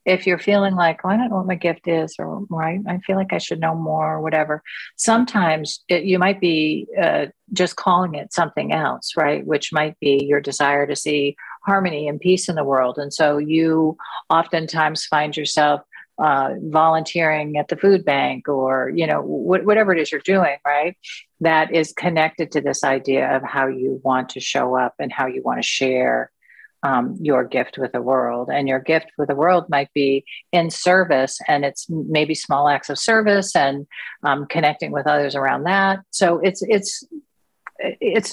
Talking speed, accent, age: 190 wpm, American, 50-69